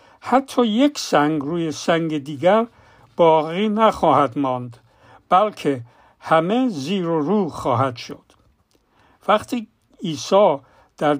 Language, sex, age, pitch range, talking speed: Persian, male, 60-79, 145-200 Hz, 100 wpm